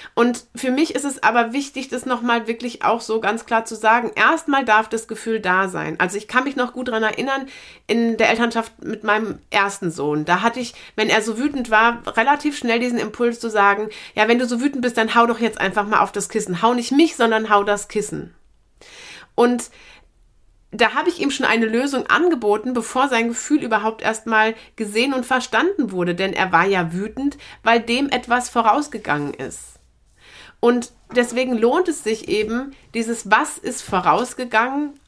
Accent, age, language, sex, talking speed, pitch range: German, 30-49, German, female, 190 wpm, 205-250 Hz